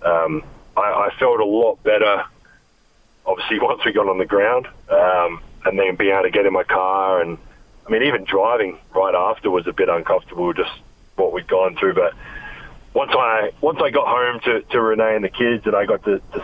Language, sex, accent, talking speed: English, male, Australian, 210 wpm